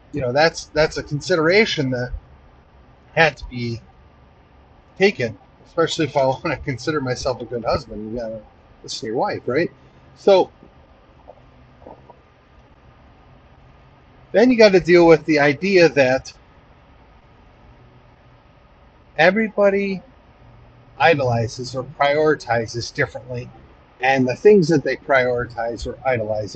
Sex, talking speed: male, 110 wpm